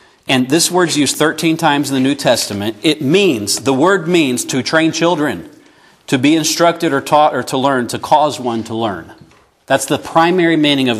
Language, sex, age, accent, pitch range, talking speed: English, male, 40-59, American, 140-180 Hz, 195 wpm